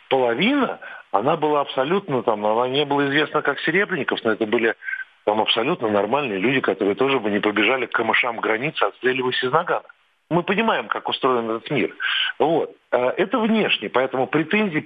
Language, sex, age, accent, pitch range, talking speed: Russian, male, 40-59, native, 125-200 Hz, 160 wpm